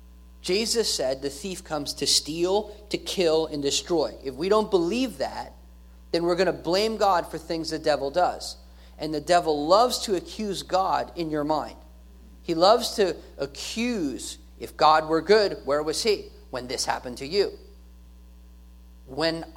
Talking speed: 165 wpm